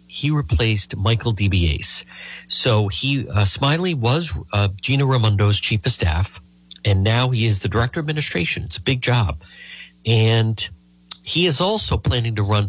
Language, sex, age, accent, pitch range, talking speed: English, male, 50-69, American, 95-125 Hz, 160 wpm